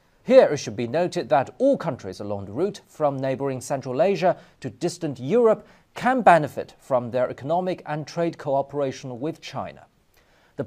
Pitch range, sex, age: 135-195 Hz, male, 40-59